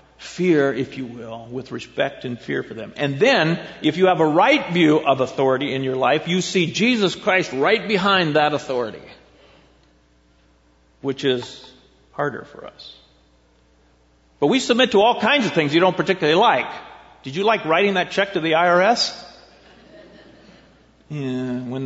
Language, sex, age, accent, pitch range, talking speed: English, male, 50-69, American, 130-190 Hz, 160 wpm